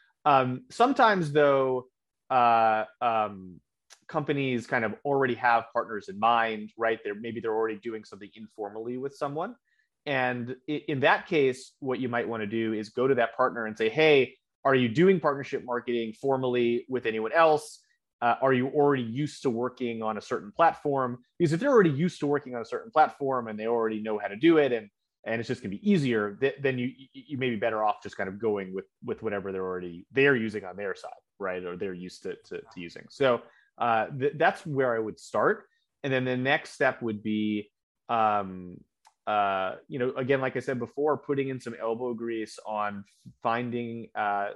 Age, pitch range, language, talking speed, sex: 30-49, 110-140 Hz, English, 200 wpm, male